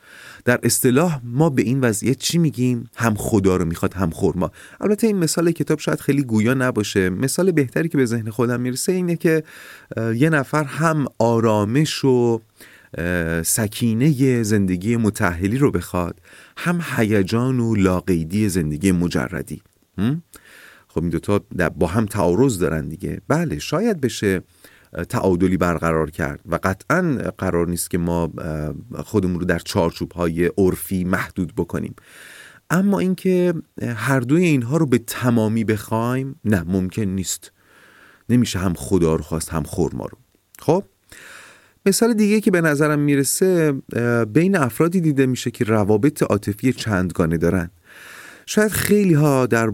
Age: 30-49